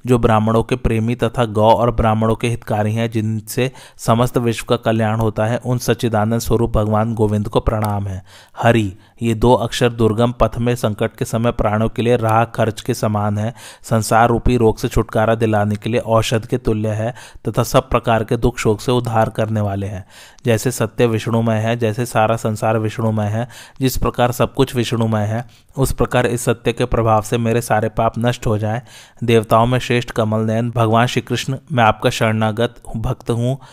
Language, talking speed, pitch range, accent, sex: Hindi, 190 wpm, 110-120 Hz, native, male